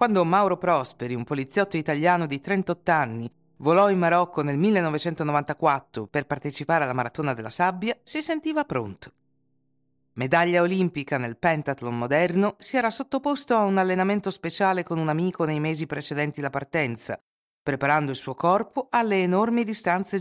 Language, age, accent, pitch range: Italian, 50-69, native, 145-200 Hz